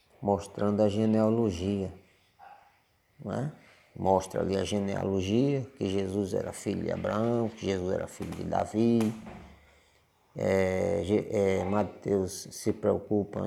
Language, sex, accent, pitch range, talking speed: Portuguese, male, Brazilian, 95-110 Hz, 115 wpm